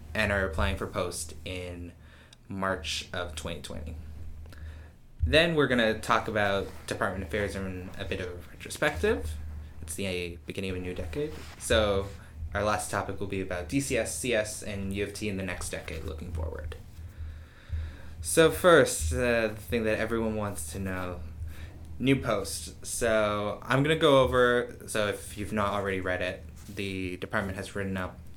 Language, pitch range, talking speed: English, 90-110 Hz, 170 wpm